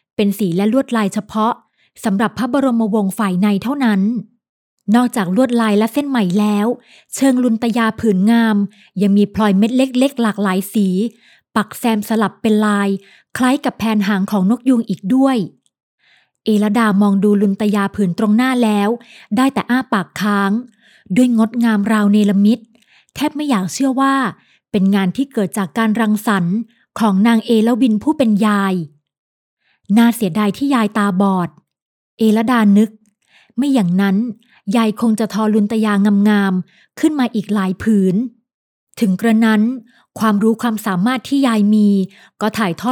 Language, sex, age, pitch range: Thai, female, 20-39, 205-235 Hz